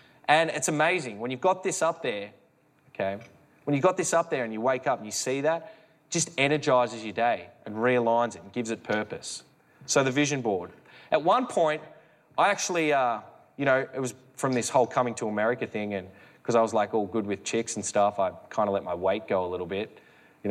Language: English